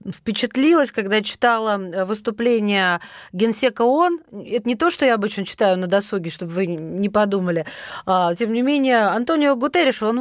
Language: Russian